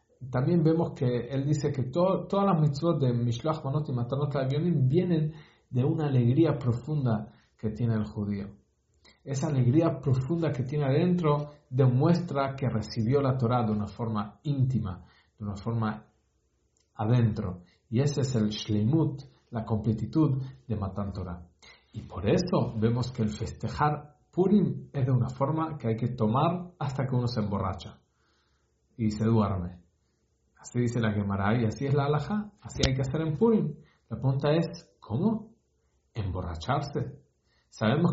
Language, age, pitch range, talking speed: English, 50-69, 110-150 Hz, 155 wpm